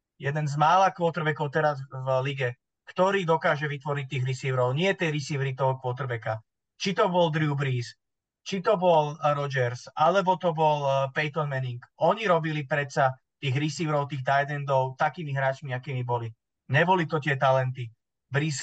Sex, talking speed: male, 150 wpm